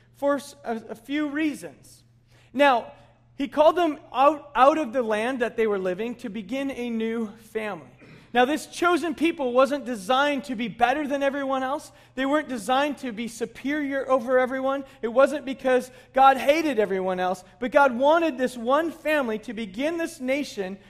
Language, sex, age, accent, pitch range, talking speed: English, male, 40-59, American, 225-280 Hz, 170 wpm